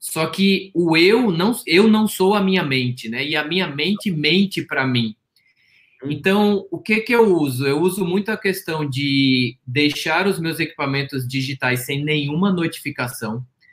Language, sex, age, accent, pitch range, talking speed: Portuguese, male, 20-39, Brazilian, 135-180 Hz, 170 wpm